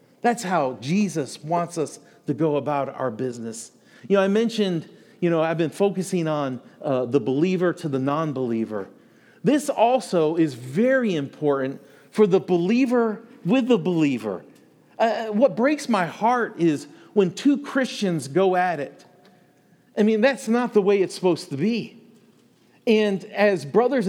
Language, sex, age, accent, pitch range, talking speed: English, male, 40-59, American, 155-225 Hz, 155 wpm